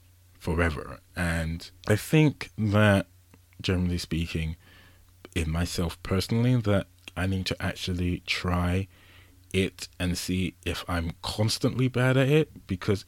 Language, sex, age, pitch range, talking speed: English, male, 20-39, 90-100 Hz, 120 wpm